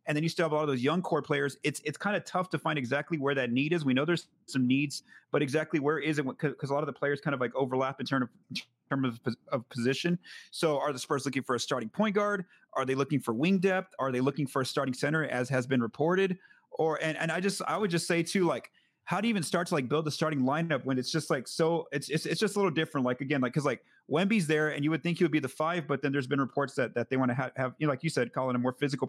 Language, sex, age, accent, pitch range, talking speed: English, male, 30-49, American, 130-165 Hz, 310 wpm